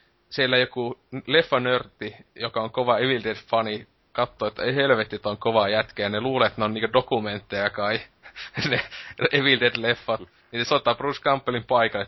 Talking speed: 165 wpm